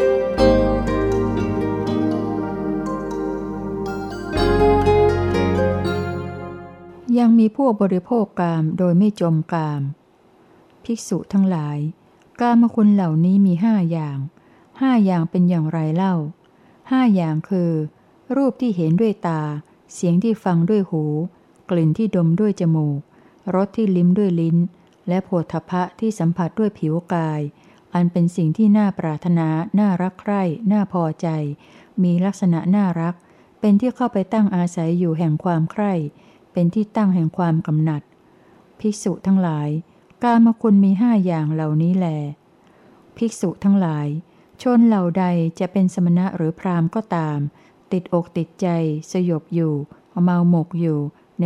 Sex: female